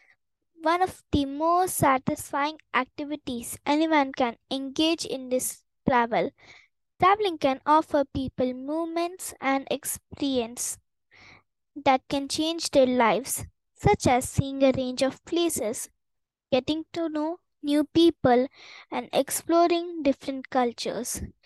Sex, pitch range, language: female, 260-315 Hz, English